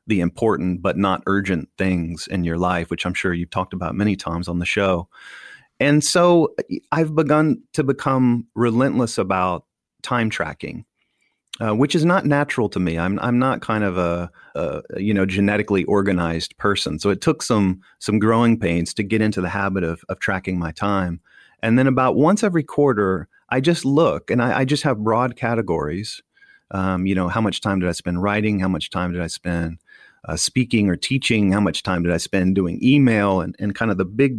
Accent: American